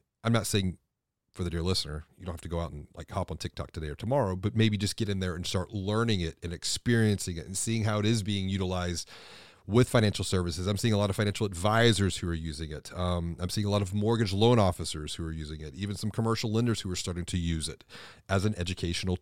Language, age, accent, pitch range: English, 30-49, American, 90-115 Hz